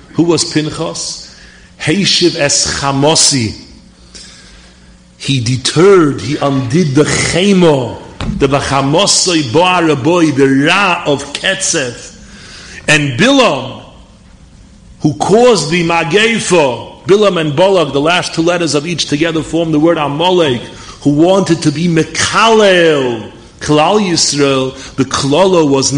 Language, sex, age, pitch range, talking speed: English, male, 40-59, 130-170 Hz, 105 wpm